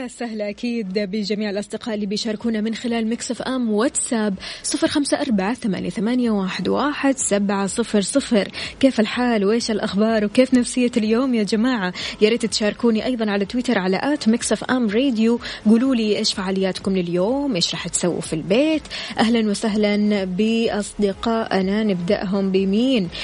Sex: female